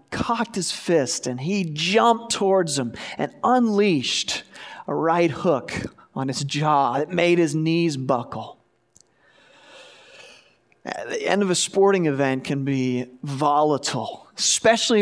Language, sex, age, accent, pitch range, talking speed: English, male, 40-59, American, 140-190 Hz, 125 wpm